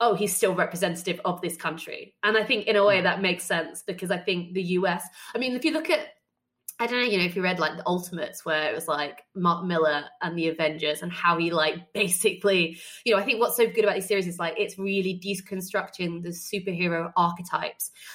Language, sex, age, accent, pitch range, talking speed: English, female, 20-39, British, 175-205 Hz, 230 wpm